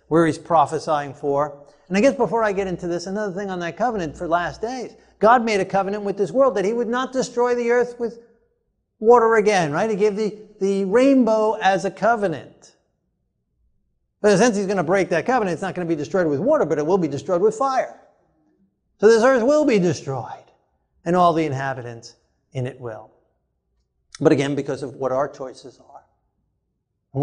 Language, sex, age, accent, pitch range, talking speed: English, male, 50-69, American, 145-210 Hz, 200 wpm